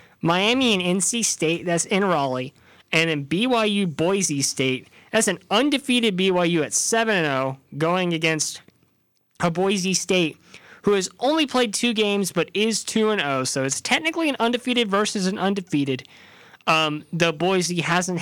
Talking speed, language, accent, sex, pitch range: 140 wpm, English, American, male, 145-215 Hz